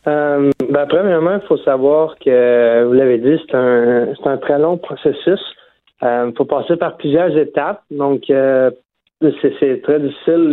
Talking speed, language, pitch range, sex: 170 wpm, French, 125-155 Hz, male